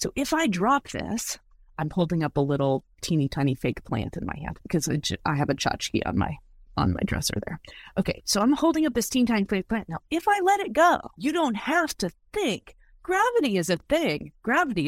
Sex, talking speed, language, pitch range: female, 220 wpm, English, 160-245 Hz